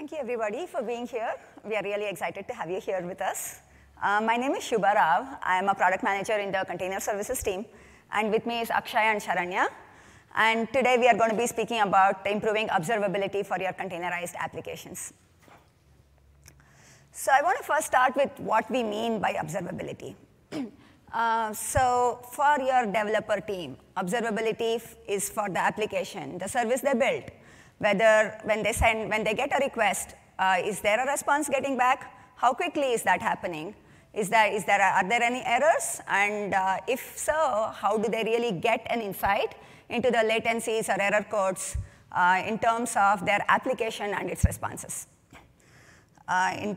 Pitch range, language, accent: 205-245 Hz, English, Indian